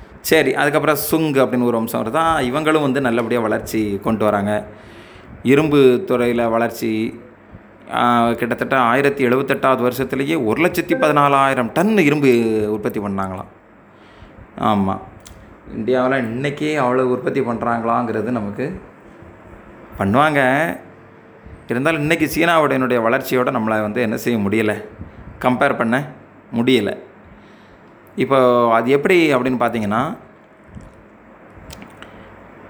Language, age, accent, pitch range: Tamil, 30-49, native, 105-135 Hz